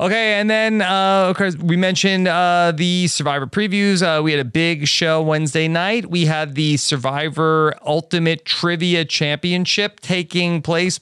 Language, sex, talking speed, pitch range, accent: English, male, 150 wpm, 130-175 Hz, American